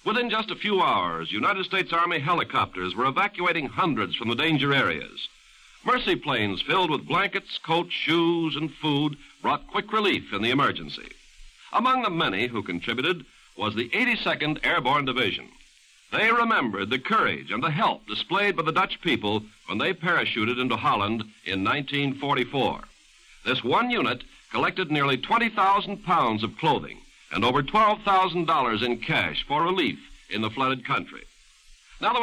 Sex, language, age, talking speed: male, English, 60-79, 155 wpm